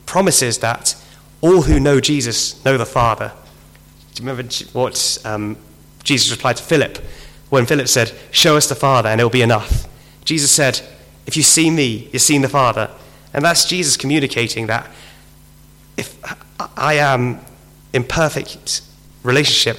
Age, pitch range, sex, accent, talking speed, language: 30-49, 115-145 Hz, male, British, 155 wpm, English